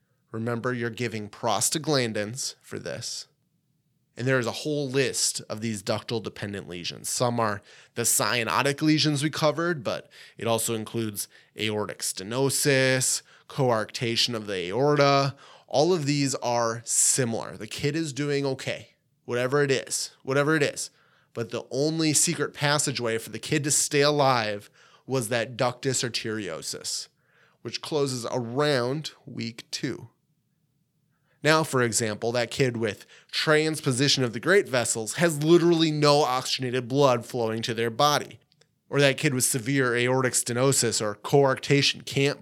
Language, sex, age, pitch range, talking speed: English, male, 20-39, 120-150 Hz, 140 wpm